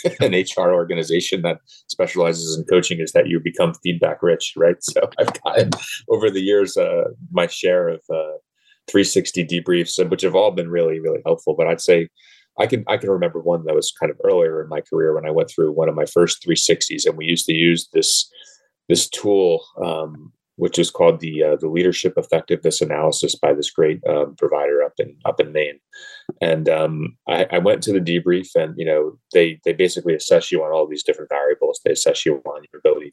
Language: English